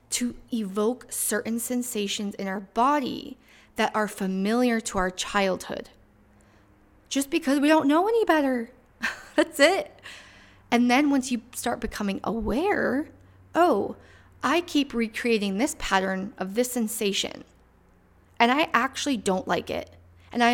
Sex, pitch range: female, 190-250 Hz